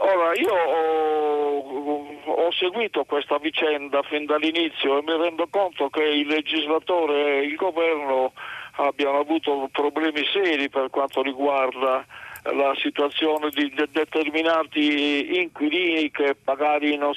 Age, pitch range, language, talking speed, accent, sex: 50-69, 145-165 Hz, Italian, 120 wpm, native, male